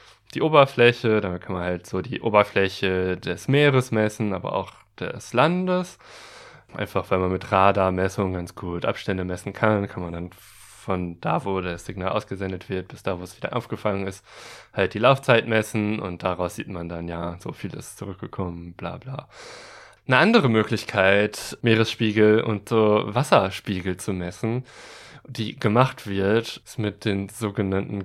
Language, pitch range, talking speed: German, 95-115 Hz, 160 wpm